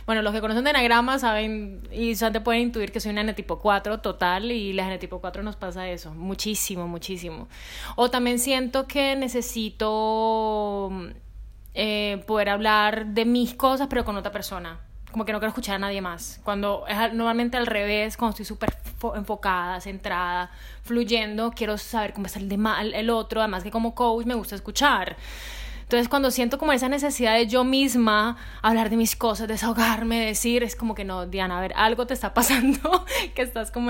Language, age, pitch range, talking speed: Spanish, 20-39, 200-235 Hz, 190 wpm